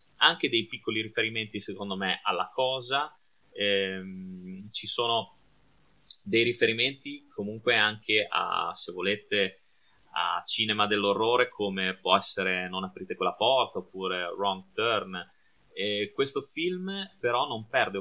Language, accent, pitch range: Italian, native, 95-110 Hz